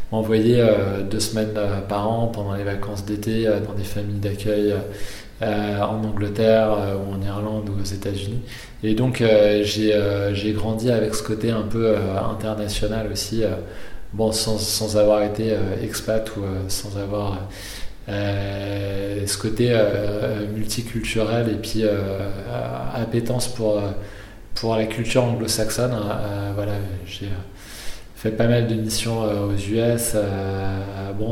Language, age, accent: French, 20-39, French